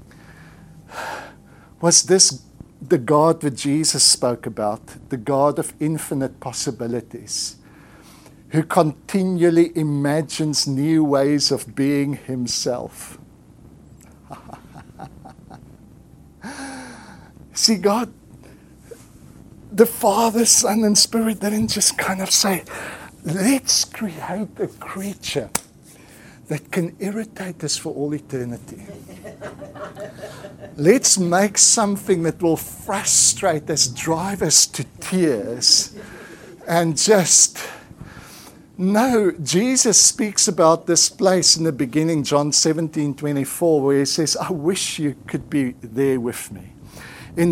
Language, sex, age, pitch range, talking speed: English, male, 50-69, 140-185 Hz, 100 wpm